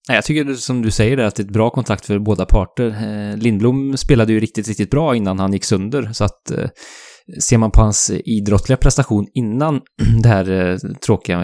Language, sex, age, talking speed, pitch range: English, male, 20-39, 190 wpm, 95-120 Hz